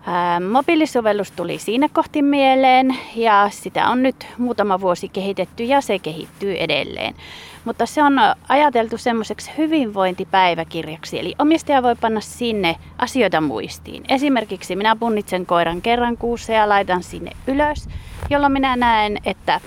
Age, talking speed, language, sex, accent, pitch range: 30-49, 135 wpm, Finnish, female, native, 190-260 Hz